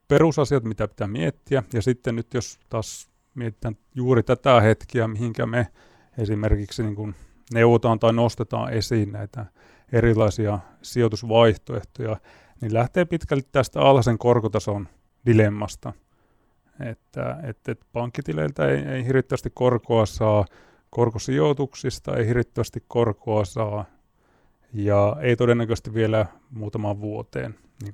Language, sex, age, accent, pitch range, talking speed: Finnish, male, 30-49, native, 110-125 Hz, 110 wpm